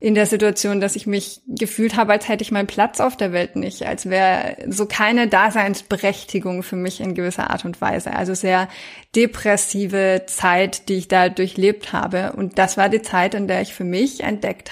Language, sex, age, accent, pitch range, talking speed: German, female, 20-39, German, 190-225 Hz, 200 wpm